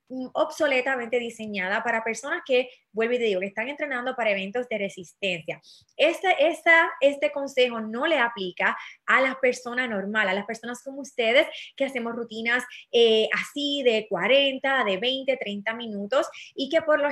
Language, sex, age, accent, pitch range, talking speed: Spanish, female, 20-39, American, 220-280 Hz, 160 wpm